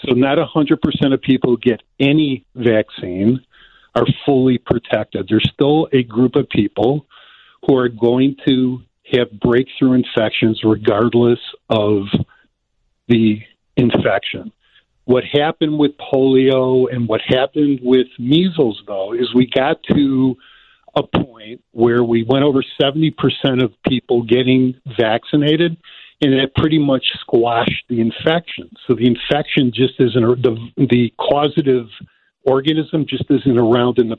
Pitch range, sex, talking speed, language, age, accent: 120-145 Hz, male, 135 wpm, English, 50-69, American